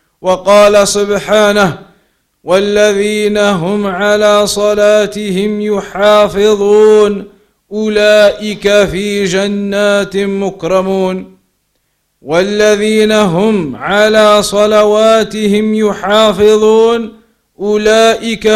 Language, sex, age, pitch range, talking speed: English, male, 40-59, 195-220 Hz, 55 wpm